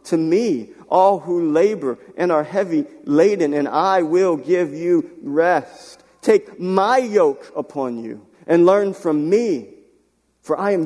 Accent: American